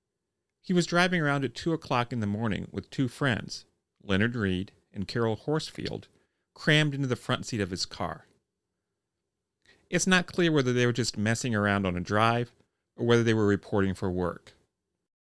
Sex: male